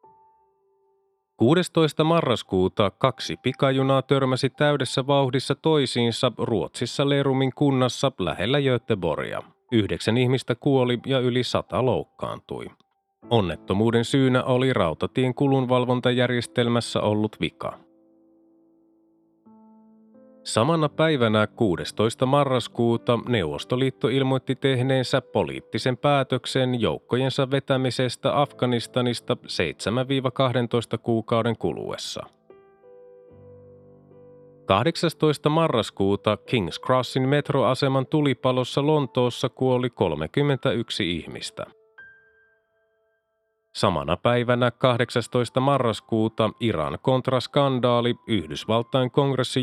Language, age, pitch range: Finnish, 30-49, 120-140 Hz